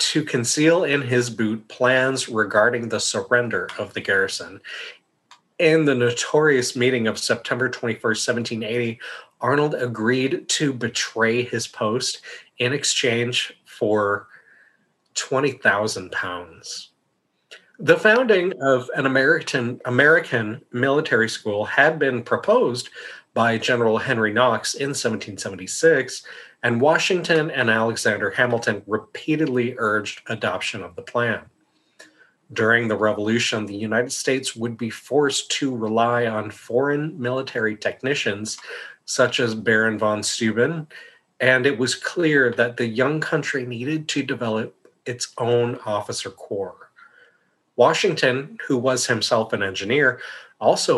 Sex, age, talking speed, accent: male, 30-49, 120 wpm, American